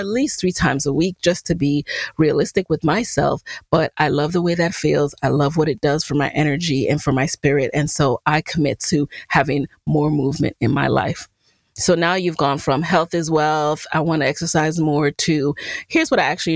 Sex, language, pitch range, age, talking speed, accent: female, English, 150-200 Hz, 30-49, 215 wpm, American